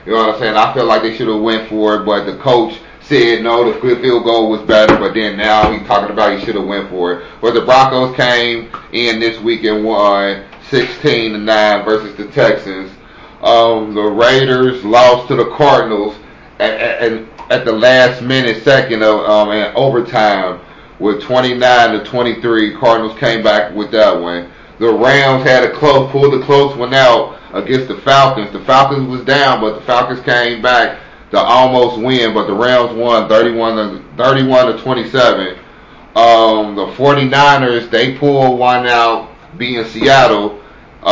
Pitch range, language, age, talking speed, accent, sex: 110-130 Hz, English, 30-49, 180 wpm, American, male